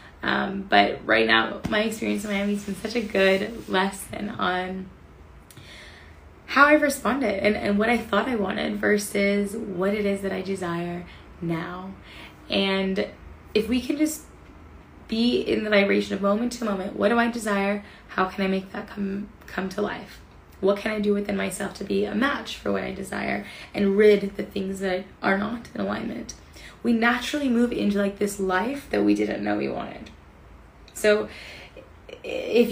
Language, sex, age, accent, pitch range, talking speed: English, female, 20-39, American, 185-220 Hz, 180 wpm